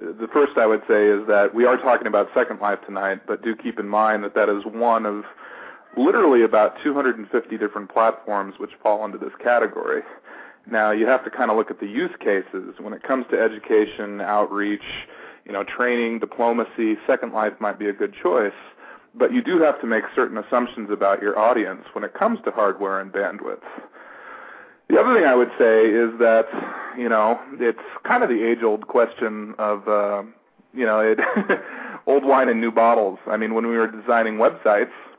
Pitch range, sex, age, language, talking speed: 105-115 Hz, male, 40-59, English, 190 wpm